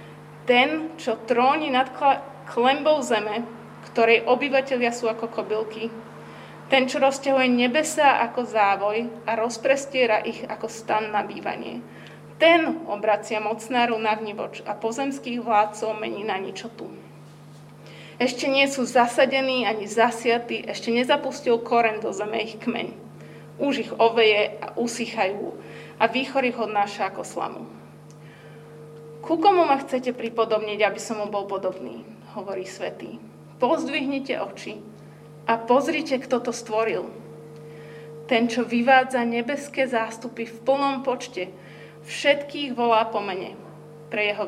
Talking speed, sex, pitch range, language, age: 120 wpm, female, 205-255 Hz, Slovak, 20-39